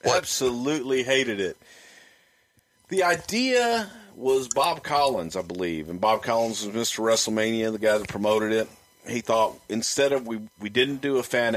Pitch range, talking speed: 110-150 Hz, 160 wpm